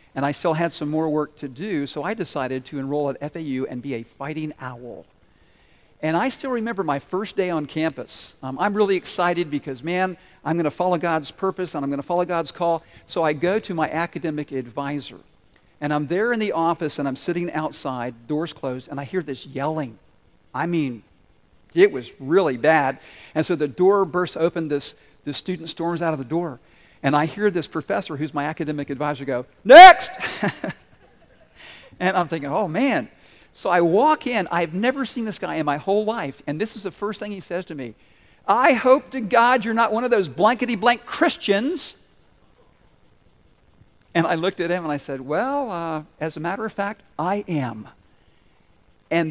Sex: male